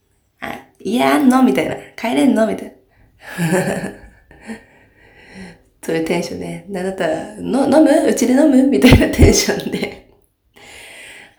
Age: 20-39